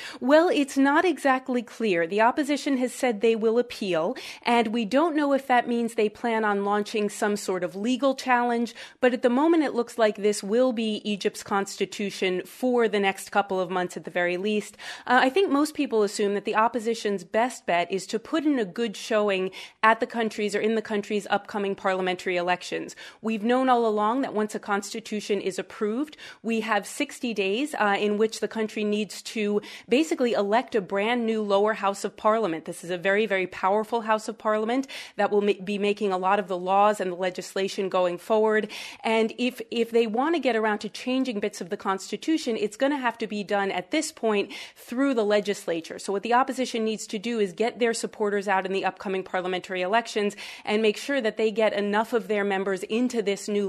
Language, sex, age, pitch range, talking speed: English, female, 30-49, 195-235 Hz, 210 wpm